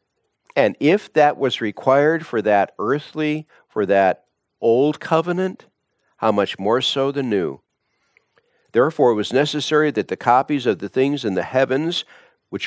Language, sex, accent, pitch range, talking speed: English, male, American, 110-145 Hz, 150 wpm